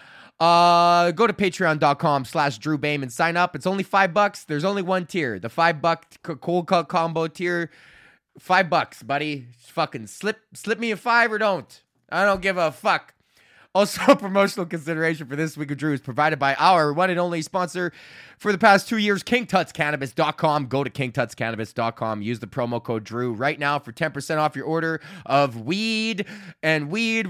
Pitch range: 155-205 Hz